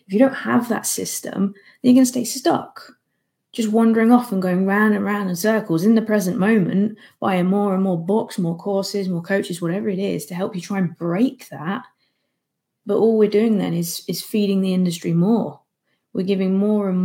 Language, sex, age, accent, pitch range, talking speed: English, female, 20-39, British, 175-220 Hz, 215 wpm